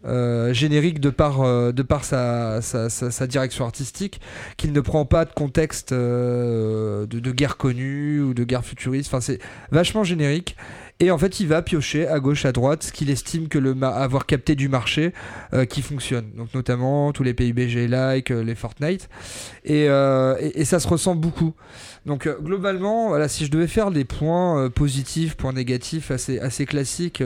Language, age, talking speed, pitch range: French, 30-49, 190 wpm, 120-145 Hz